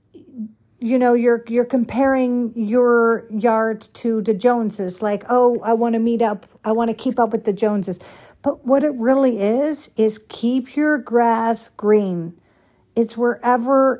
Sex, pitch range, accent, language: female, 215-245 Hz, American, English